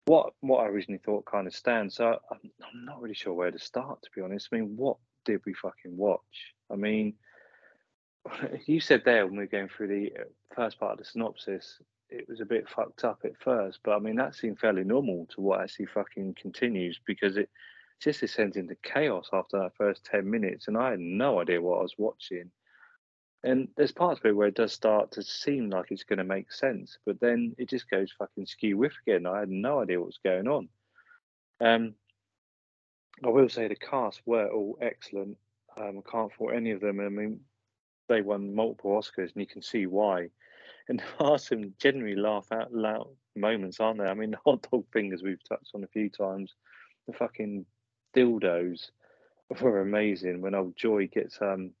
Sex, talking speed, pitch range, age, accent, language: male, 205 wpm, 100-115 Hz, 30-49, British, English